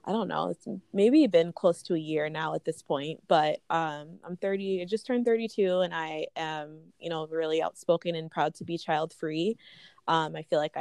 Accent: American